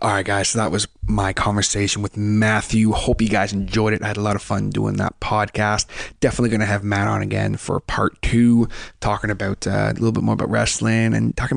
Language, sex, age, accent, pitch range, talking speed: English, male, 20-39, American, 100-115 Hz, 235 wpm